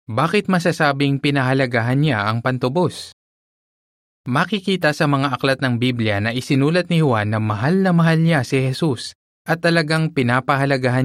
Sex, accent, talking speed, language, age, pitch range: male, native, 140 wpm, Filipino, 20-39, 105-140 Hz